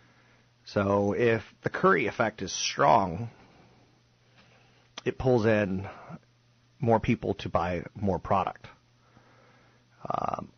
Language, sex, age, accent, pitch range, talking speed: English, male, 40-59, American, 95-120 Hz, 95 wpm